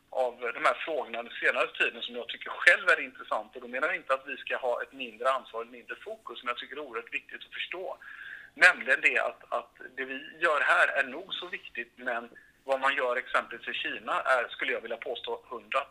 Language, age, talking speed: Swedish, 50-69, 230 wpm